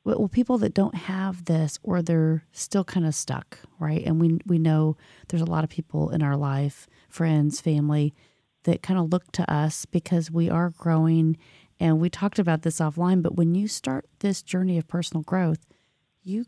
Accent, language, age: American, English, 40-59